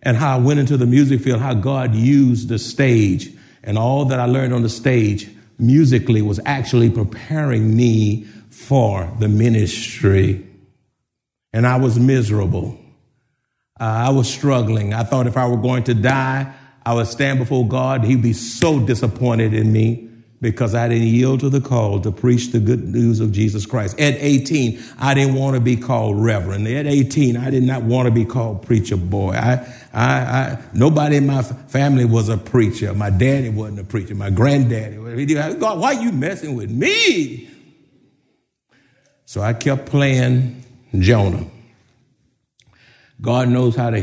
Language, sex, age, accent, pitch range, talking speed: English, male, 50-69, American, 110-130 Hz, 170 wpm